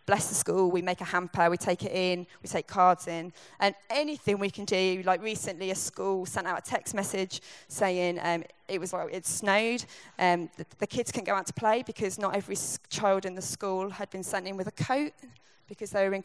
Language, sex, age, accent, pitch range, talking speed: English, female, 20-39, British, 170-200 Hz, 230 wpm